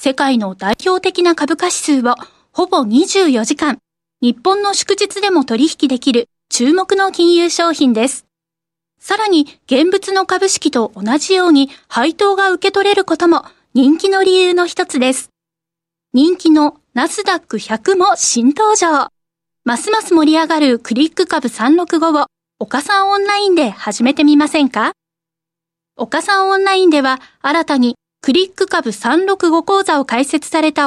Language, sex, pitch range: Japanese, female, 245-355 Hz